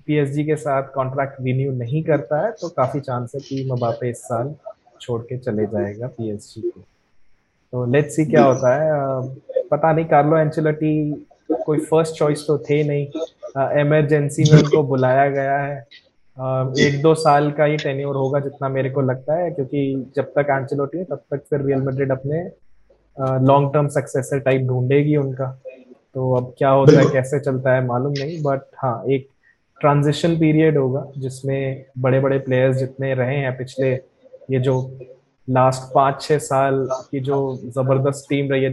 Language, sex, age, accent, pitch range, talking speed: Hindi, male, 20-39, native, 130-150 Hz, 125 wpm